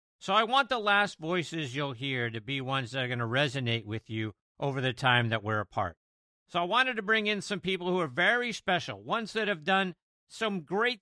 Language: English